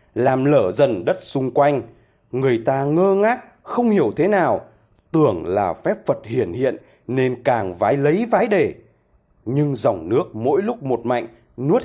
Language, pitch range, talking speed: Vietnamese, 120-175 Hz, 170 wpm